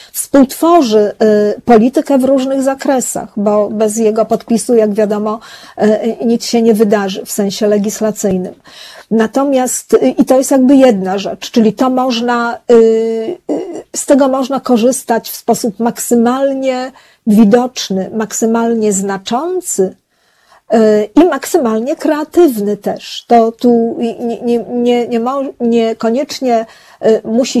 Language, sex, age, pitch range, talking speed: Polish, female, 40-59, 220-250 Hz, 110 wpm